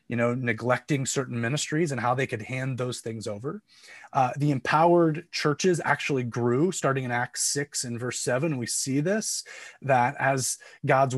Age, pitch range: 30-49, 125-155 Hz